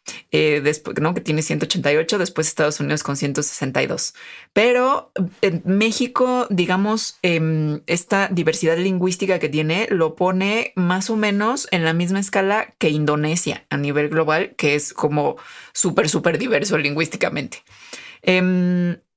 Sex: female